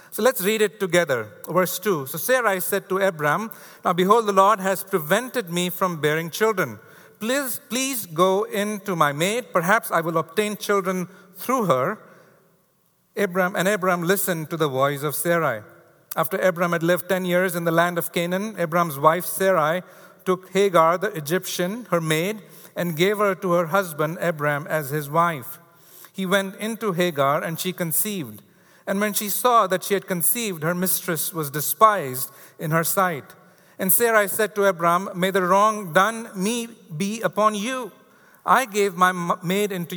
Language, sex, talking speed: English, male, 170 wpm